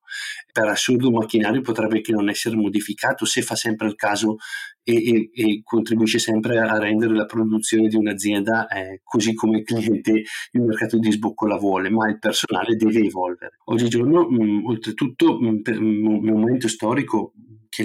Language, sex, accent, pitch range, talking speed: Italian, male, native, 105-120 Hz, 160 wpm